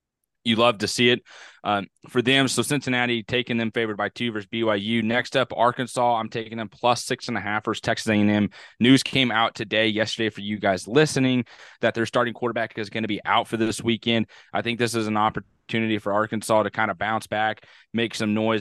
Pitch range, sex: 105-120 Hz, male